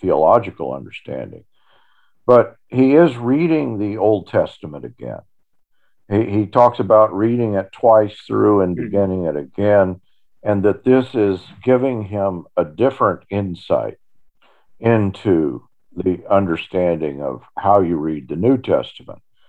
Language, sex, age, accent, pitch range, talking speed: English, male, 50-69, American, 85-115 Hz, 125 wpm